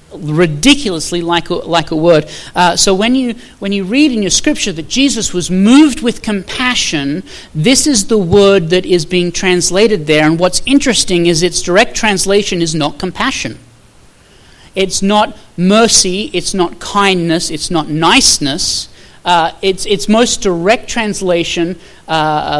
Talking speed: 150 wpm